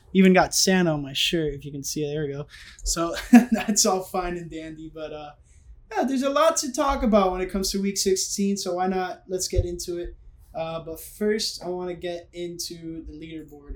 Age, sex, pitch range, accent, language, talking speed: 20-39, male, 165-200 Hz, American, English, 220 wpm